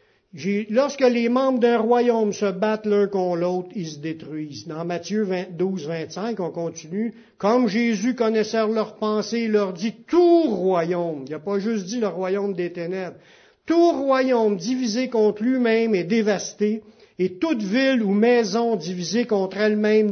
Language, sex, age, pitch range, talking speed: French, male, 60-79, 170-220 Hz, 175 wpm